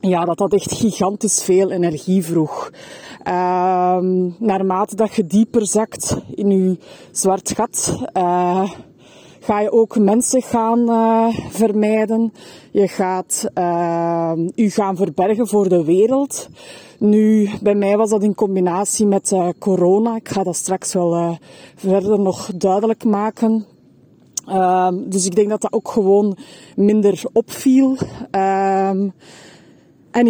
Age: 20-39